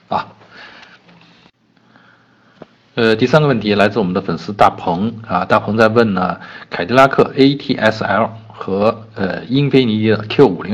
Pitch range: 100-120 Hz